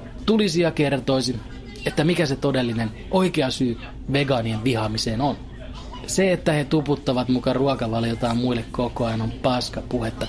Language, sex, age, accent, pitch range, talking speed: Finnish, male, 20-39, native, 125-150 Hz, 135 wpm